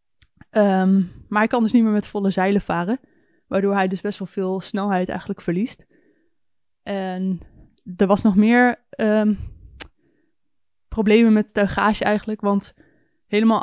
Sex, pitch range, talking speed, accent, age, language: female, 190-215 Hz, 130 wpm, Dutch, 20-39, Dutch